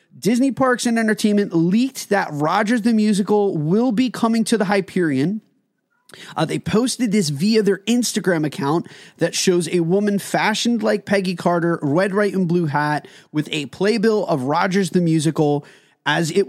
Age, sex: 30-49, male